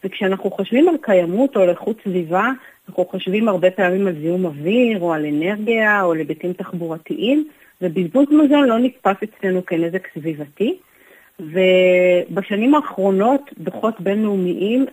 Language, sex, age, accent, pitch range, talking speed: Hebrew, female, 40-59, native, 175-220 Hz, 135 wpm